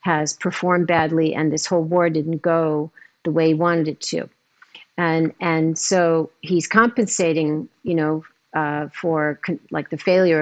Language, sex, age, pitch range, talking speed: English, female, 50-69, 160-190 Hz, 160 wpm